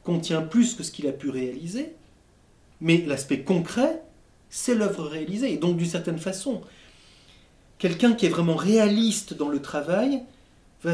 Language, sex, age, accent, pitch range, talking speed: French, male, 40-59, French, 150-215 Hz, 155 wpm